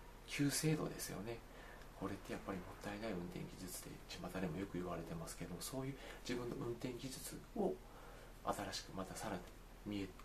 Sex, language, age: male, Japanese, 40-59